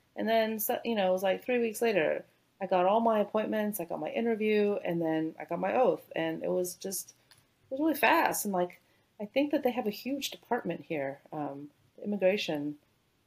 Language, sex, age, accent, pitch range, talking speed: English, female, 30-49, American, 155-205 Hz, 205 wpm